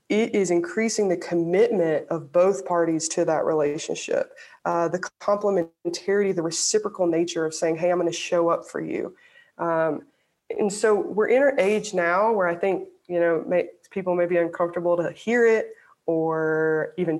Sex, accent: female, American